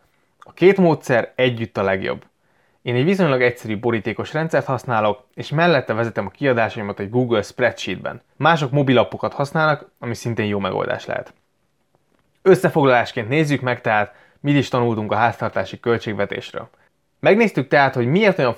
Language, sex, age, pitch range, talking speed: Hungarian, male, 20-39, 110-140 Hz, 140 wpm